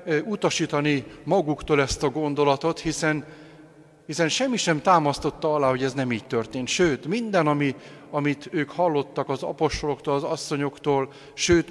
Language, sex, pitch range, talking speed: Hungarian, male, 130-155 Hz, 140 wpm